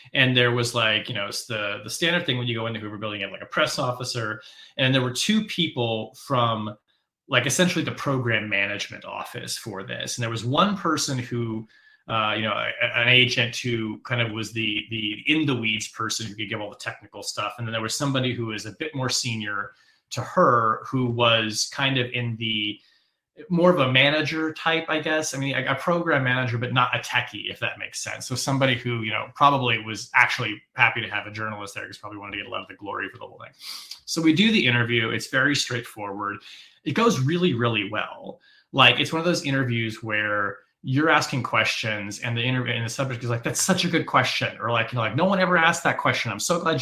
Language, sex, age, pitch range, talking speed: English, male, 20-39, 110-140 Hz, 230 wpm